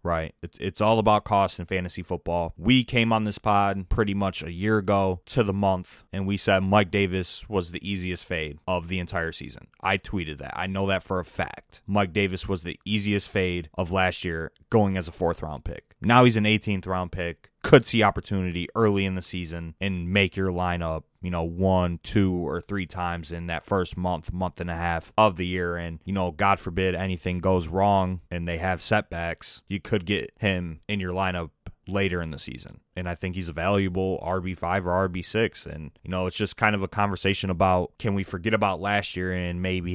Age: 20-39